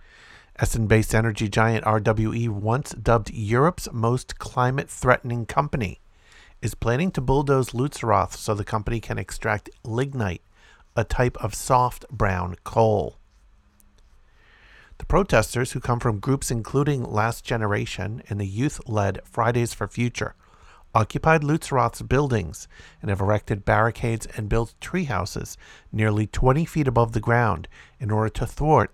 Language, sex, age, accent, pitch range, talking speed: English, male, 50-69, American, 105-125 Hz, 130 wpm